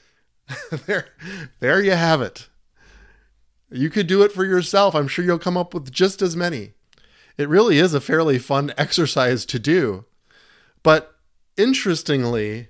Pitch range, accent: 130-180 Hz, American